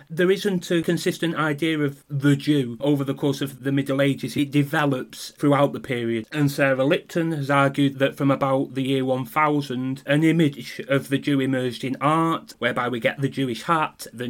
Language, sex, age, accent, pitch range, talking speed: English, male, 30-49, British, 130-145 Hz, 195 wpm